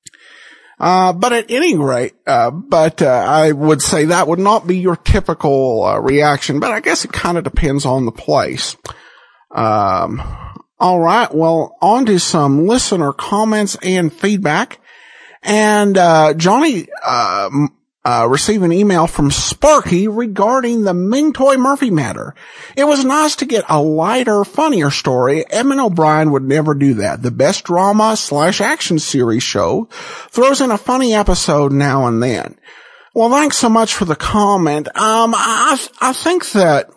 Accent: American